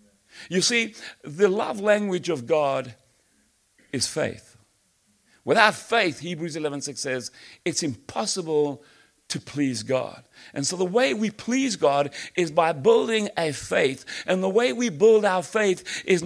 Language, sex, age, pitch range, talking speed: English, male, 60-79, 155-215 Hz, 150 wpm